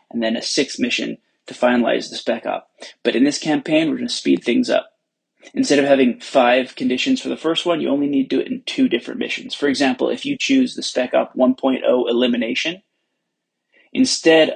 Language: English